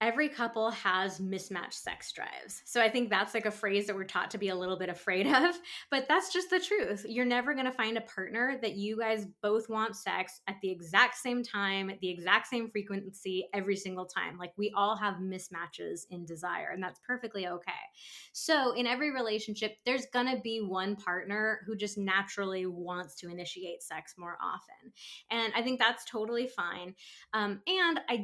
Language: English